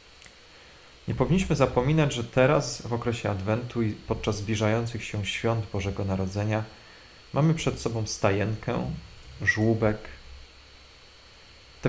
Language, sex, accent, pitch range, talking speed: Polish, male, native, 90-120 Hz, 105 wpm